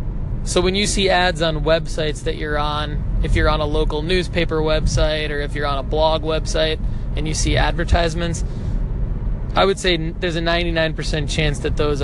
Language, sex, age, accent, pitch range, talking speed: English, male, 20-39, American, 140-170 Hz, 185 wpm